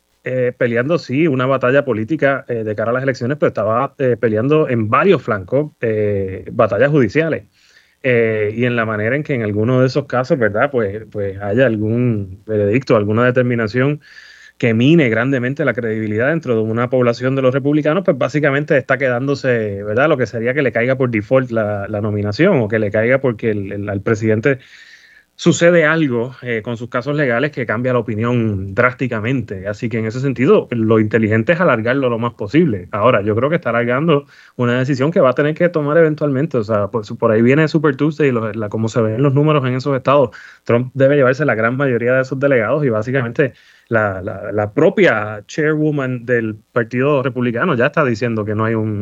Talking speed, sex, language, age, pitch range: 200 wpm, male, Spanish, 30-49, 110-140 Hz